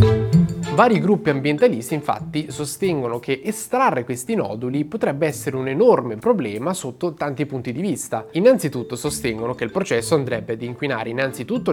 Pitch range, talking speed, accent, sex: 120-170 Hz, 145 wpm, native, male